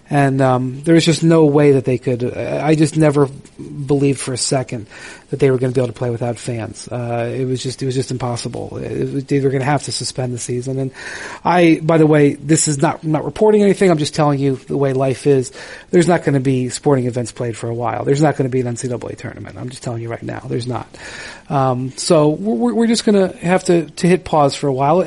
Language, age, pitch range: English, 40-59, 135-165 Hz